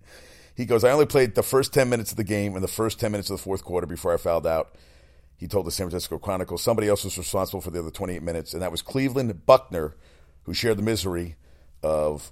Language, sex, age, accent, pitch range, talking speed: English, male, 50-69, American, 70-100 Hz, 245 wpm